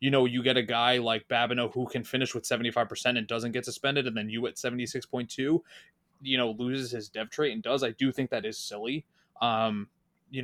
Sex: male